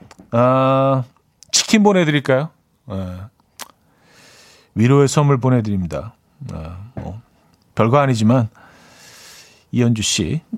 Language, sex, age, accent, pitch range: Korean, male, 40-59, native, 115-175 Hz